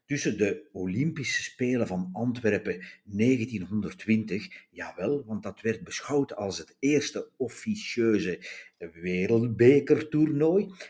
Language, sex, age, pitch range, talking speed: Dutch, male, 50-69, 95-155 Hz, 95 wpm